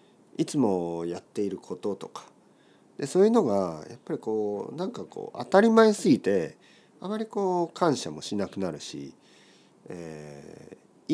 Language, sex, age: Japanese, male, 40-59